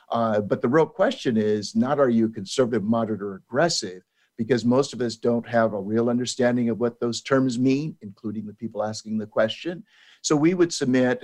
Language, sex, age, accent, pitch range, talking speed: English, male, 50-69, American, 110-140 Hz, 200 wpm